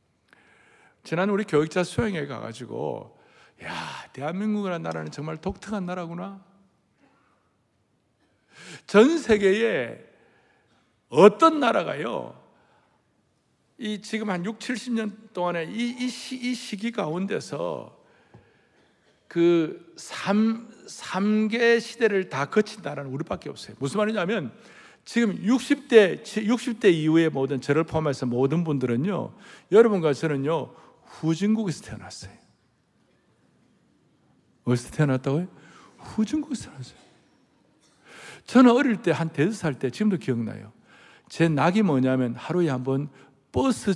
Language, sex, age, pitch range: Korean, male, 60-79, 145-220 Hz